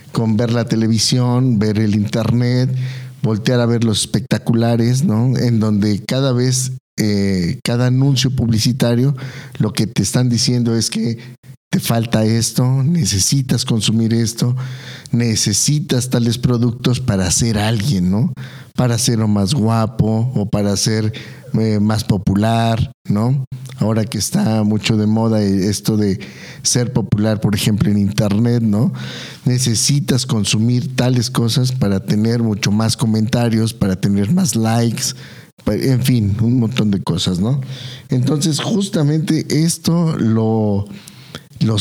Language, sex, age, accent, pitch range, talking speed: Spanish, male, 50-69, Mexican, 110-130 Hz, 130 wpm